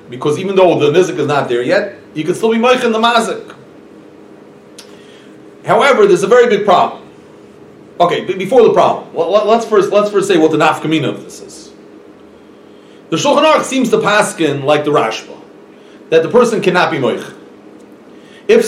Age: 40-59